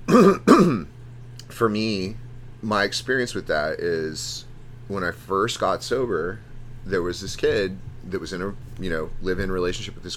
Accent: American